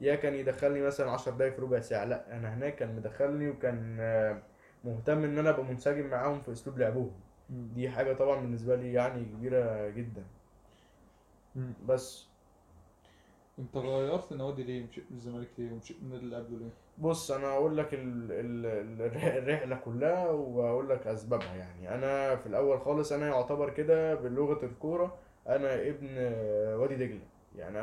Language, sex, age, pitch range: Arabic, male, 20-39, 115-145 Hz